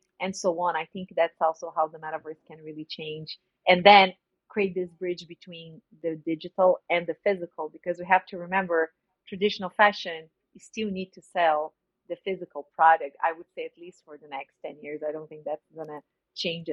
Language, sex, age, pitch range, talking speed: English, female, 30-49, 165-195 Hz, 195 wpm